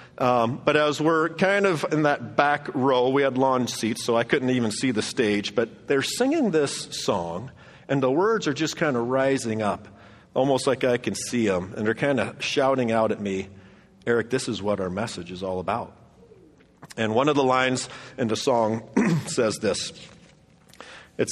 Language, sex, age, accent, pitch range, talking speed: English, male, 40-59, American, 110-145 Hz, 195 wpm